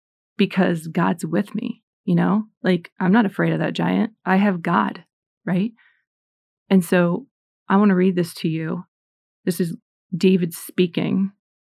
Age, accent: 30-49, American